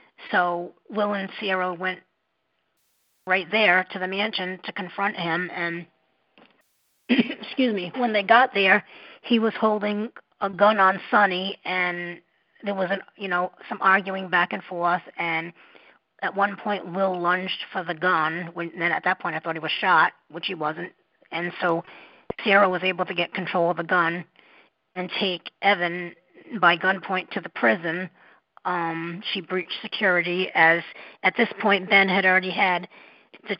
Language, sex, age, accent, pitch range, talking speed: English, female, 40-59, American, 175-200 Hz, 165 wpm